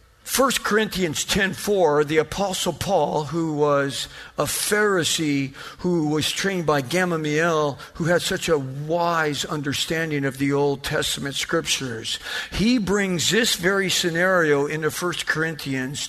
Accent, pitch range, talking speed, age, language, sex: American, 165-225 Hz, 130 wpm, 50-69, English, male